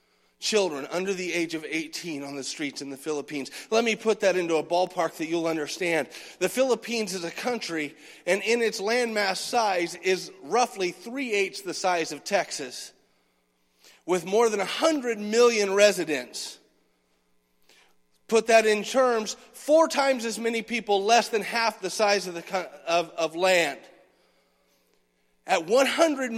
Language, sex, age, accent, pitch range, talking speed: English, male, 40-59, American, 155-235 Hz, 150 wpm